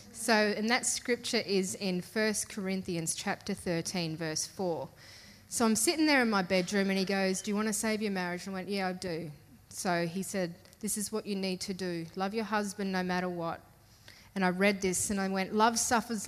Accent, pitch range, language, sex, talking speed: Australian, 180-225 Hz, English, female, 220 wpm